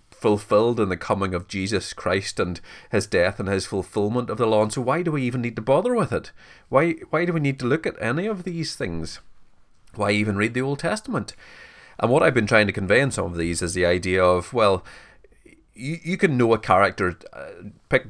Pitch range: 95-115 Hz